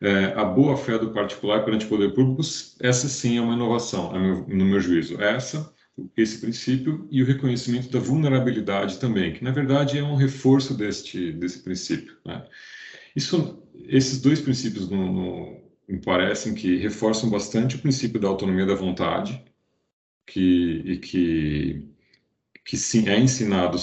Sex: male